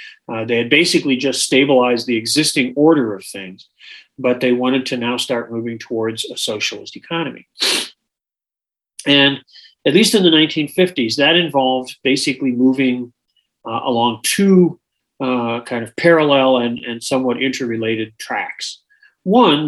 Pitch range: 120-150 Hz